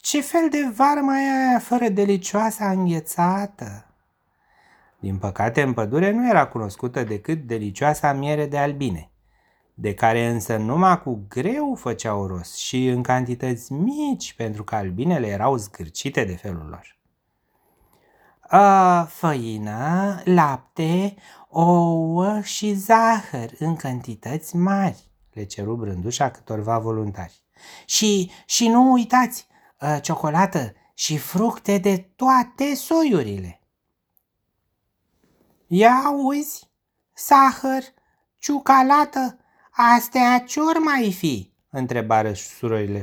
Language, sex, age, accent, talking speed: Romanian, male, 30-49, native, 105 wpm